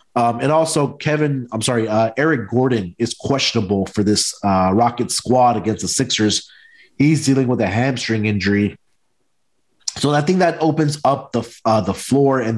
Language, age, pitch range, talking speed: English, 30-49, 110-135 Hz, 170 wpm